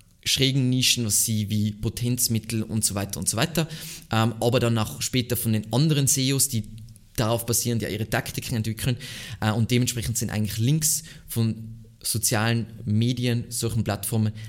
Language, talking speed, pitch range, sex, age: German, 155 wpm, 105-120 Hz, male, 20-39